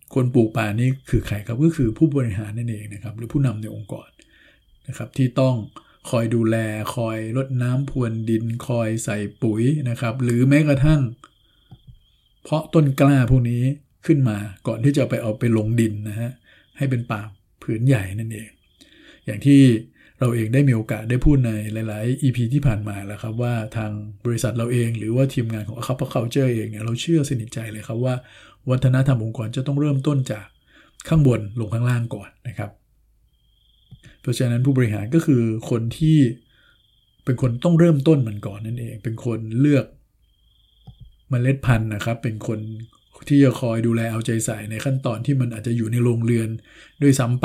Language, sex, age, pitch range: Thai, male, 60-79, 110-130 Hz